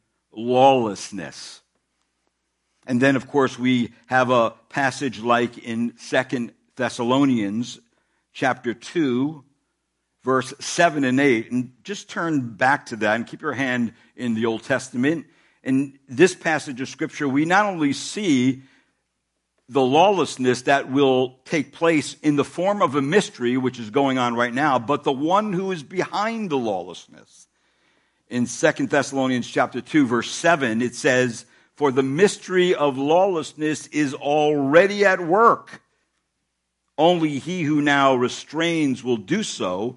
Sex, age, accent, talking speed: male, 60-79, American, 140 wpm